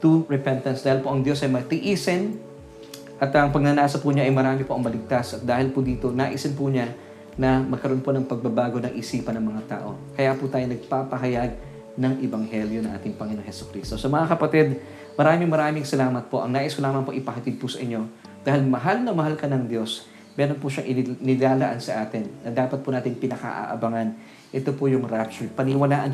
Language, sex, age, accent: Filipino, male, 20-39, native